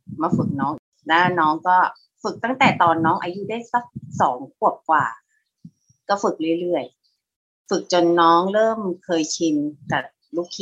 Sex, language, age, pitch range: female, Thai, 30-49, 175-240 Hz